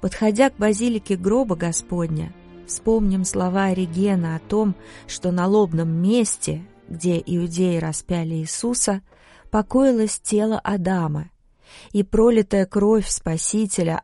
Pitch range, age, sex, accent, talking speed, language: 175-210 Hz, 30-49, female, native, 105 wpm, Russian